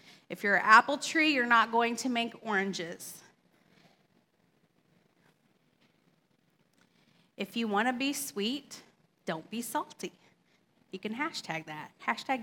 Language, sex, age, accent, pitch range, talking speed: English, female, 30-49, American, 185-245 Hz, 120 wpm